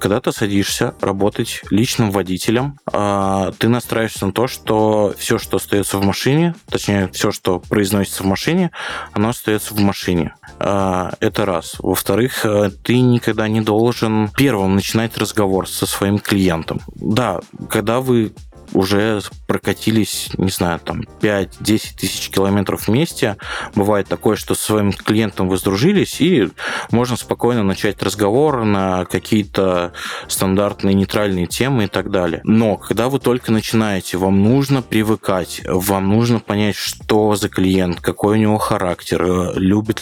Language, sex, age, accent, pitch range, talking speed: Russian, male, 20-39, native, 95-115 Hz, 135 wpm